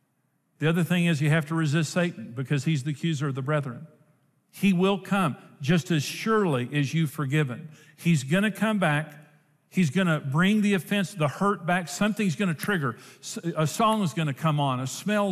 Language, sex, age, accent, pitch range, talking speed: English, male, 50-69, American, 145-180 Hz, 205 wpm